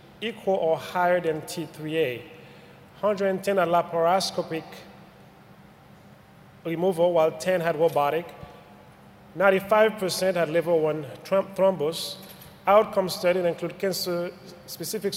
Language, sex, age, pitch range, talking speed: English, male, 30-49, 160-185 Hz, 90 wpm